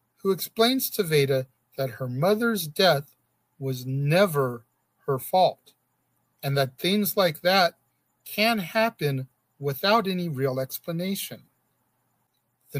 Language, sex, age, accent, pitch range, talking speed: English, male, 50-69, American, 130-190 Hz, 115 wpm